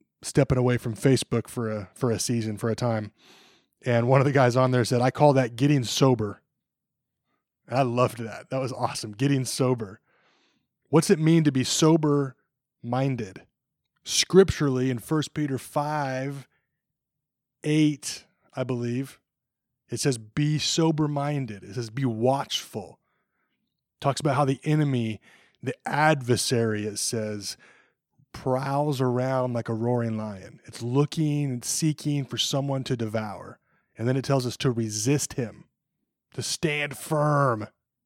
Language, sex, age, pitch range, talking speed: English, male, 20-39, 120-145 Hz, 140 wpm